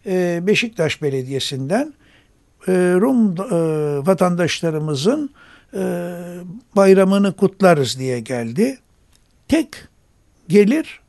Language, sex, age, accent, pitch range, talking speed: Turkish, male, 60-79, native, 155-220 Hz, 55 wpm